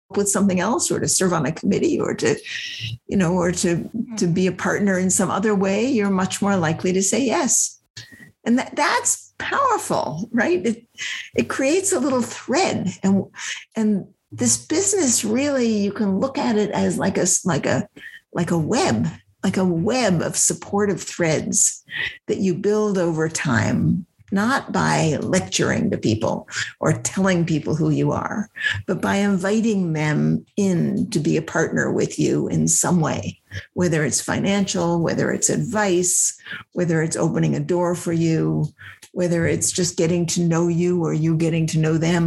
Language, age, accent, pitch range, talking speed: English, 50-69, American, 165-215 Hz, 170 wpm